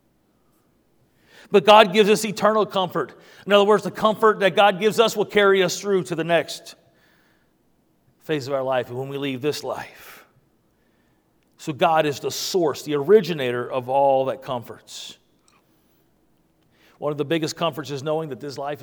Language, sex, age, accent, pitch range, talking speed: English, male, 40-59, American, 145-185 Hz, 165 wpm